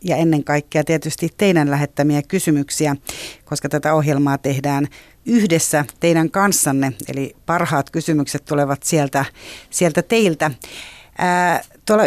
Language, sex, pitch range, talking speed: Finnish, female, 145-170 Hz, 115 wpm